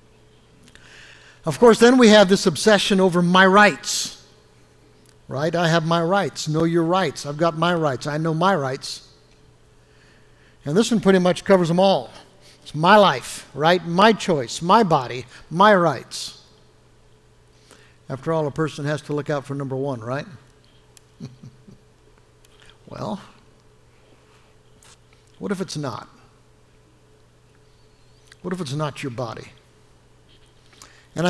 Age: 60-79